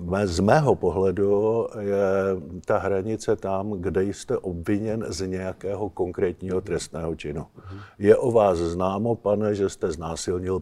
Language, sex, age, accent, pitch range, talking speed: Czech, male, 50-69, native, 90-110 Hz, 130 wpm